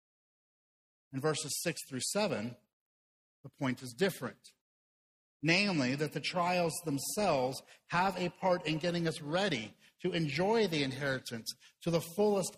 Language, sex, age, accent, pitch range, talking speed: English, male, 50-69, American, 140-175 Hz, 135 wpm